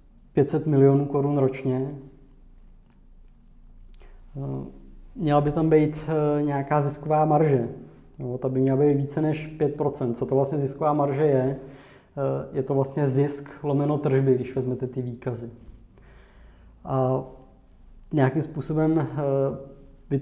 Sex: male